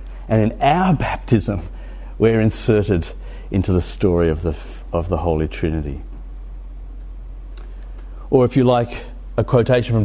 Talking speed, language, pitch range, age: 130 wpm, English, 95-145 Hz, 50-69